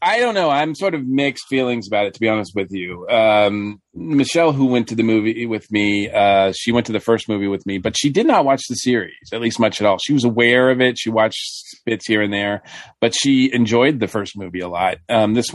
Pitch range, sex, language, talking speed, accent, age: 110-135 Hz, male, English, 255 wpm, American, 40-59